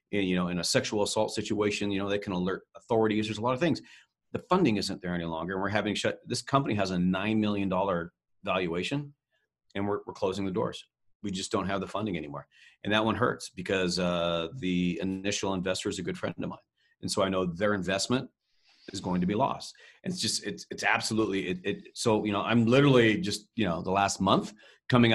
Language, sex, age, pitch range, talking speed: English, male, 40-59, 90-110 Hz, 220 wpm